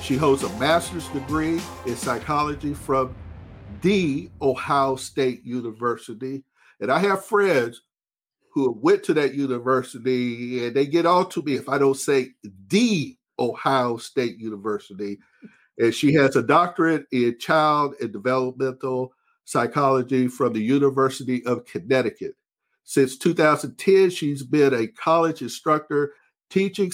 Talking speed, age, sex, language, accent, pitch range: 130 wpm, 50-69, male, English, American, 125-155 Hz